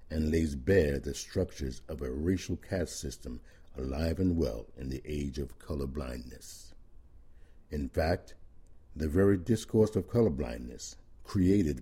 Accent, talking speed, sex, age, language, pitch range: American, 130 wpm, male, 60-79, English, 70-90 Hz